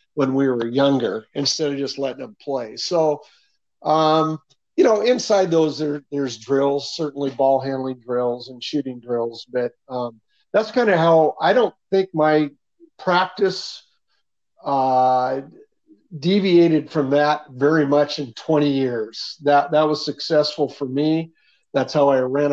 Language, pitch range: English, 135-155 Hz